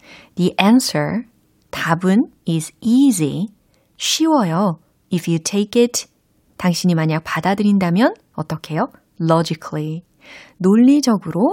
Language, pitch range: Korean, 160-235 Hz